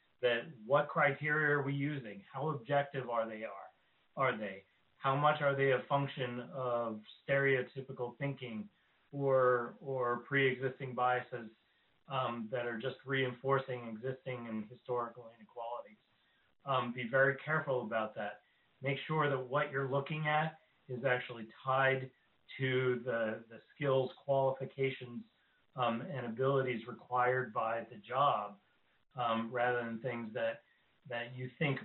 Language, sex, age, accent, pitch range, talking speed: English, male, 40-59, American, 120-135 Hz, 135 wpm